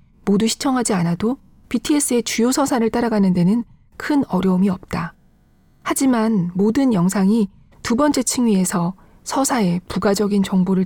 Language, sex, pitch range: Korean, female, 195-255 Hz